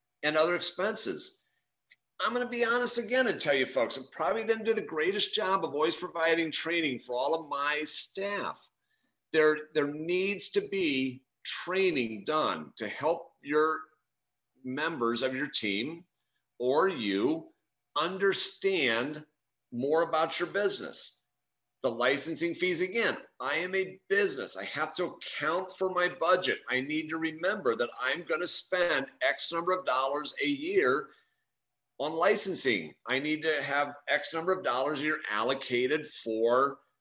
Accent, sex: American, male